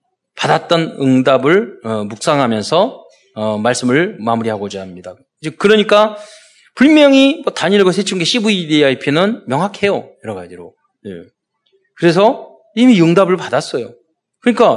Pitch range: 145-210 Hz